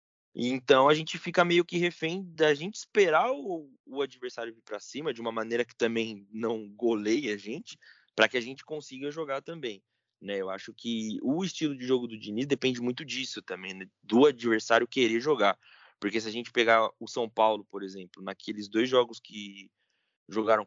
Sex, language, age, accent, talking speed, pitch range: male, Portuguese, 20-39, Brazilian, 190 wpm, 105-145 Hz